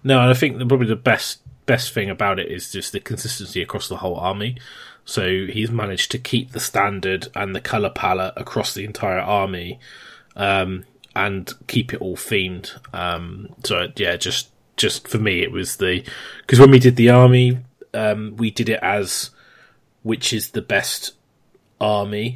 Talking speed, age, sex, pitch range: 180 wpm, 20-39, male, 95-125 Hz